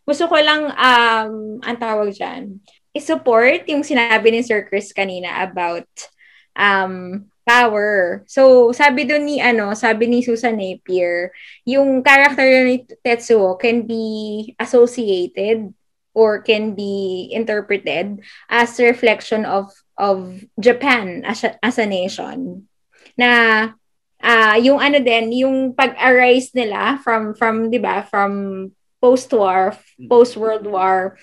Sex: female